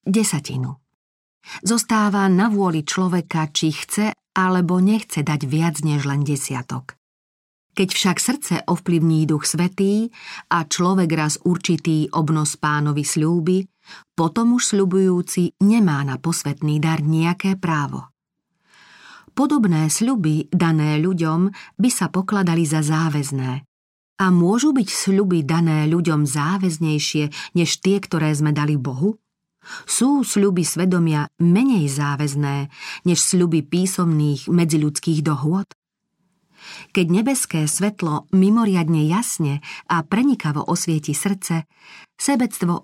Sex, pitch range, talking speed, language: female, 150-190 Hz, 110 wpm, Slovak